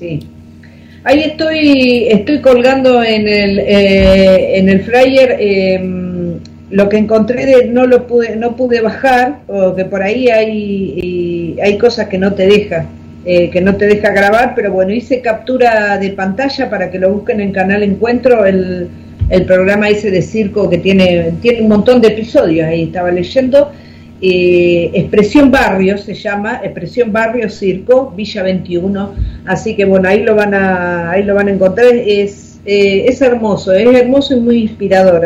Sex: female